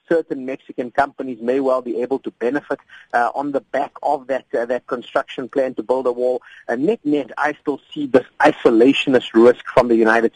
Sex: male